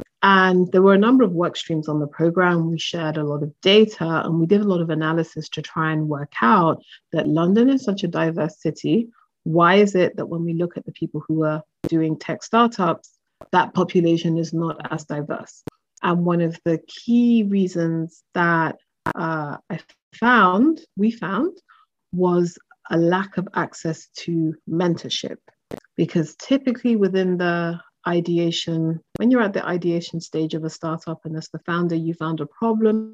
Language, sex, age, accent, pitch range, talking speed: English, female, 30-49, British, 165-200 Hz, 175 wpm